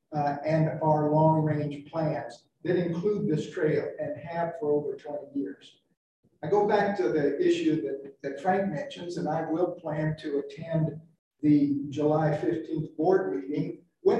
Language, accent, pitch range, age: English, American, 150-180 Hz, 50-69